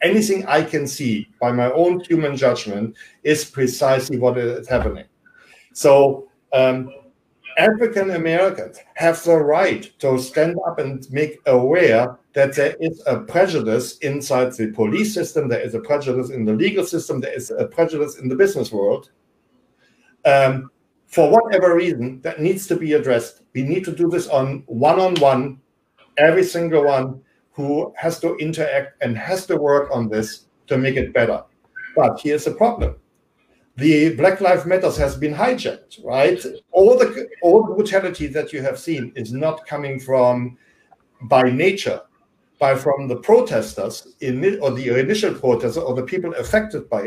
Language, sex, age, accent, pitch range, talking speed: English, male, 60-79, German, 130-180 Hz, 160 wpm